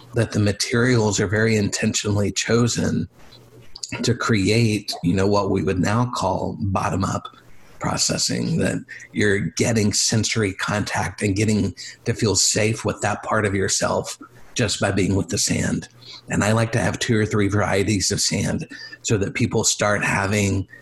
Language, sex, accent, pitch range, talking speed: English, male, American, 105-120 Hz, 160 wpm